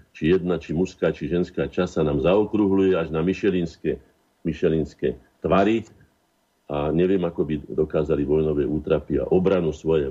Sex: male